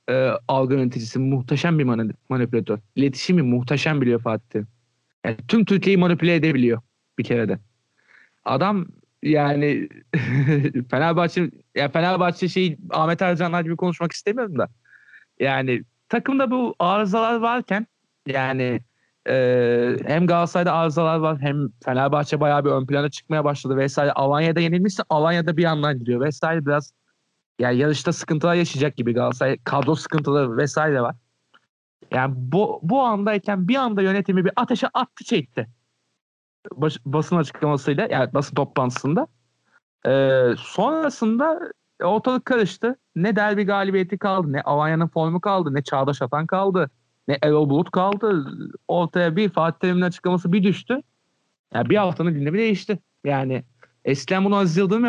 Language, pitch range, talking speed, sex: Turkish, 135-190 Hz, 135 wpm, male